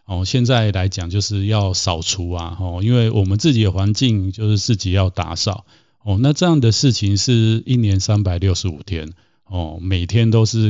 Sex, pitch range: male, 95-115 Hz